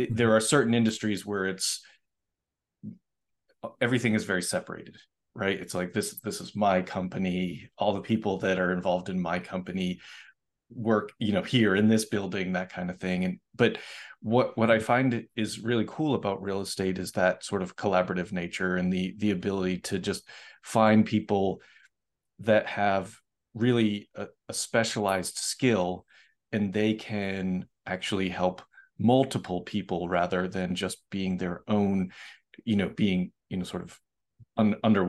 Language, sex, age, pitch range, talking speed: English, male, 30-49, 90-110 Hz, 160 wpm